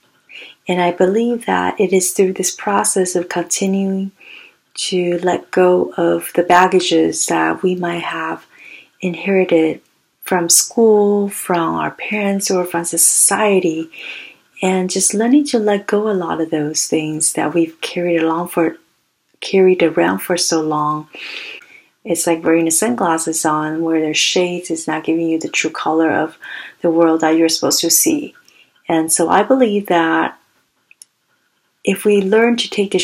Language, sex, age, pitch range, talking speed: English, female, 40-59, 160-185 Hz, 150 wpm